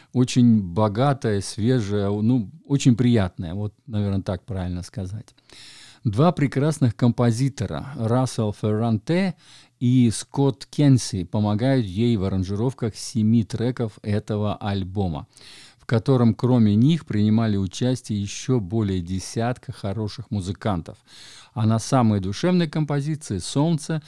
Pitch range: 105-130 Hz